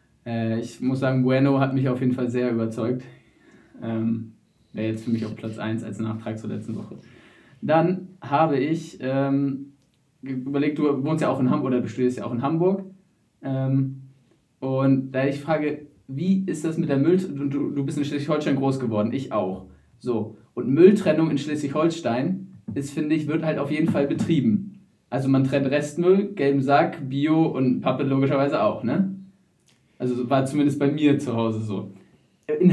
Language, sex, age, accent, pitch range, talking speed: German, male, 20-39, German, 135-185 Hz, 175 wpm